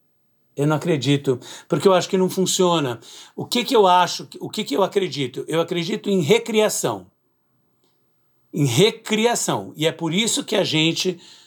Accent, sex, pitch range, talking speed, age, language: Brazilian, male, 140-190 Hz, 165 wpm, 60-79, Portuguese